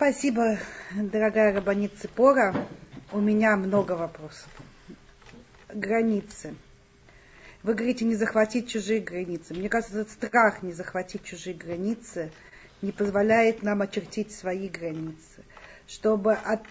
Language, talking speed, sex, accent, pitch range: Russian, 105 wpm, female, native, 200-240 Hz